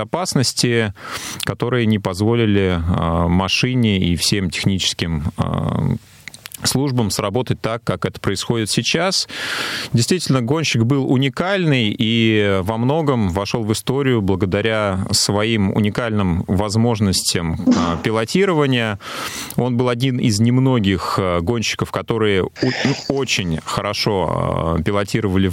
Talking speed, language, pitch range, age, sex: 105 wpm, Russian, 95-125 Hz, 30-49, male